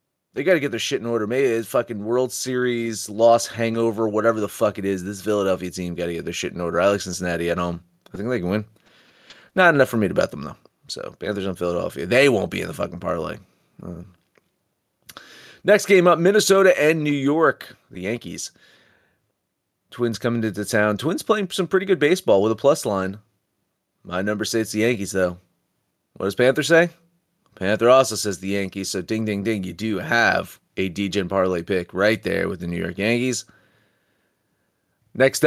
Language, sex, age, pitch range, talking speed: English, male, 30-49, 95-125 Hz, 200 wpm